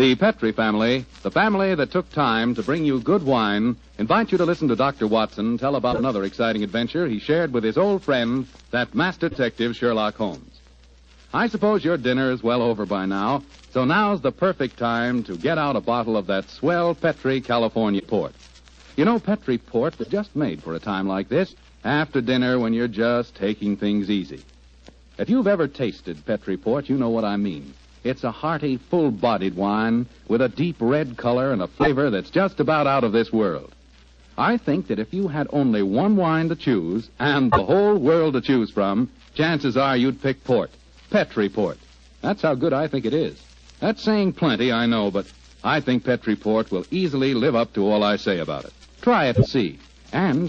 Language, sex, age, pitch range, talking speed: English, male, 60-79, 105-155 Hz, 200 wpm